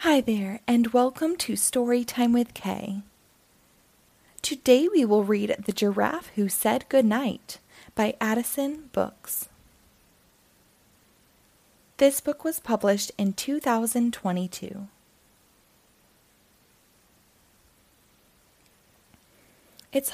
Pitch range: 200-270 Hz